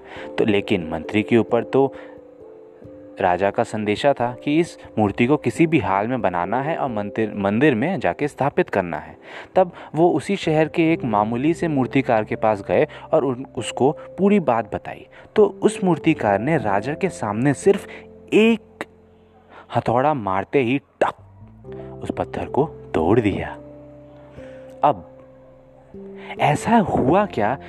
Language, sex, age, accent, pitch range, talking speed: Hindi, male, 30-49, native, 105-160 Hz, 145 wpm